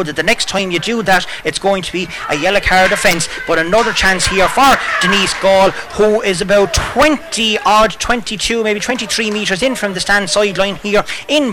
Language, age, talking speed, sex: English, 30-49, 200 wpm, male